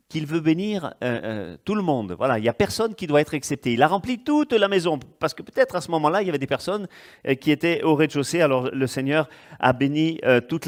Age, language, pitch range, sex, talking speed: 40-59, French, 145-210 Hz, male, 260 wpm